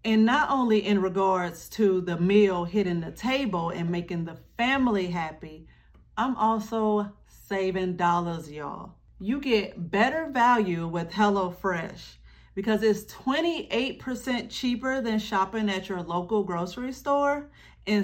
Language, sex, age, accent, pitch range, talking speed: English, female, 40-59, American, 180-245 Hz, 130 wpm